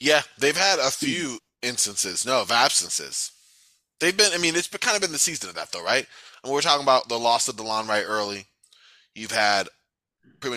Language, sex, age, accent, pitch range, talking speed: English, male, 20-39, American, 110-160 Hz, 210 wpm